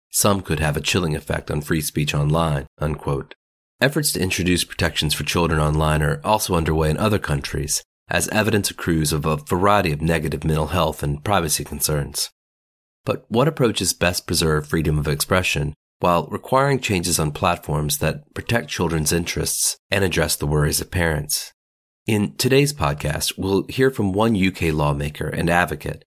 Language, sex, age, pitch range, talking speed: English, male, 30-49, 75-100 Hz, 165 wpm